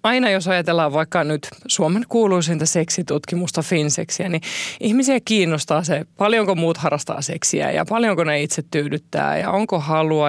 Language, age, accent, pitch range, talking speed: Finnish, 20-39, native, 160-195 Hz, 145 wpm